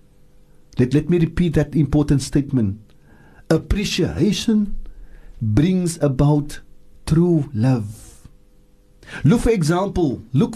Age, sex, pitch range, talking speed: 50-69, male, 130-175 Hz, 90 wpm